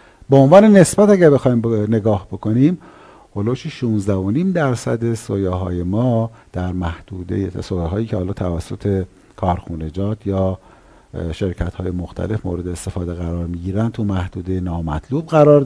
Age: 50-69